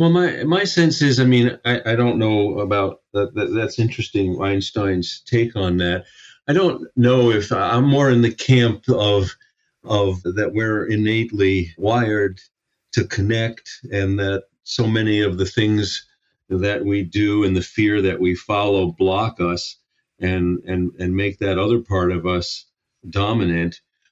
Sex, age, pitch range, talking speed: male, 50-69, 100-125 Hz, 160 wpm